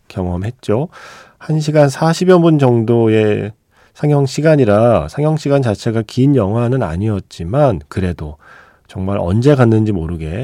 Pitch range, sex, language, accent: 100-135 Hz, male, Korean, native